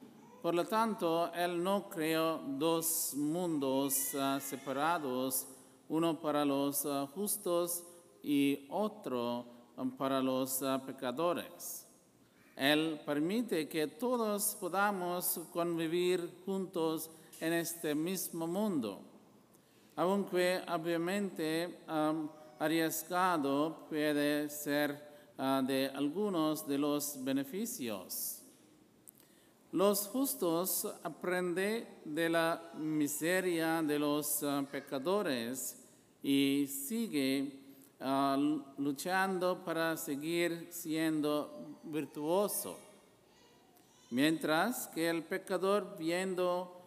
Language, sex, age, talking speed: English, male, 50-69, 85 wpm